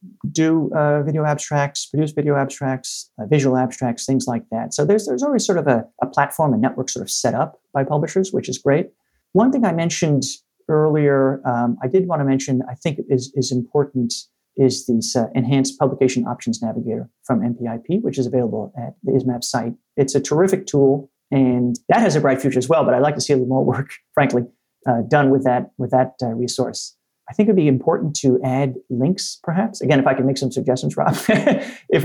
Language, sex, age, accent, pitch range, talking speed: English, male, 40-59, American, 130-155 Hz, 210 wpm